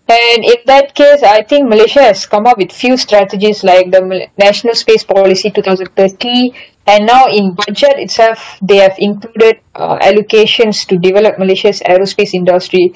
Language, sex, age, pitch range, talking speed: Malay, female, 10-29, 195-250 Hz, 160 wpm